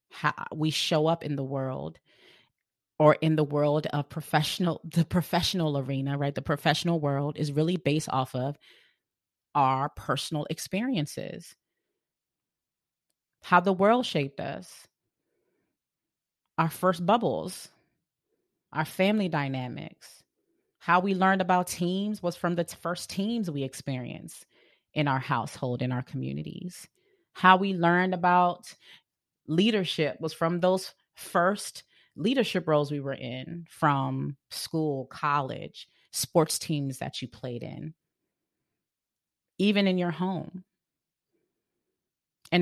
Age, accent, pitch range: 30-49, American, 145-180 Hz